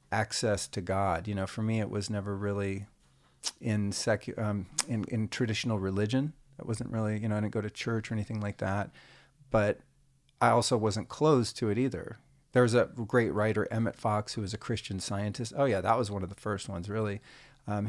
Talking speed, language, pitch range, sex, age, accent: 210 wpm, English, 105-125 Hz, male, 40-59, American